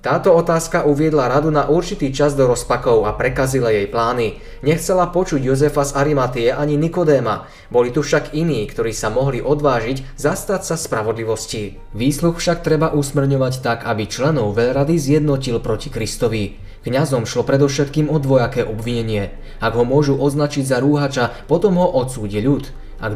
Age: 20-39